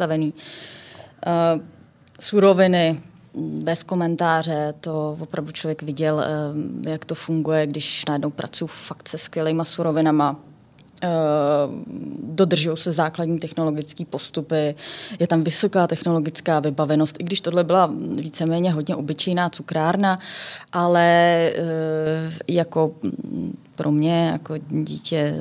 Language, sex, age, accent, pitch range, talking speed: Czech, female, 20-39, native, 155-180 Hz, 95 wpm